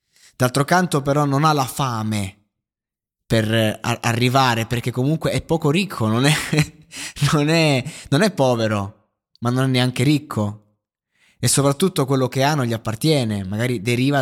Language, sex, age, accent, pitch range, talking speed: Italian, male, 20-39, native, 115-145 Hz, 145 wpm